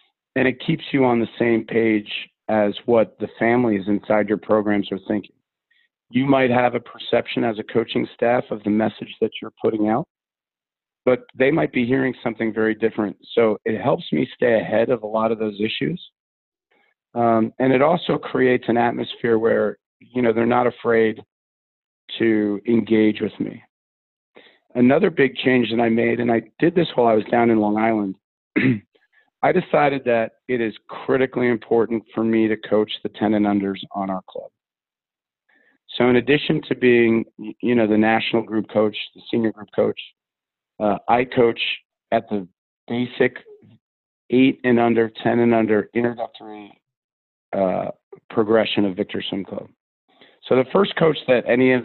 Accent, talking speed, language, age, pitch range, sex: American, 170 wpm, English, 40-59, 105-125 Hz, male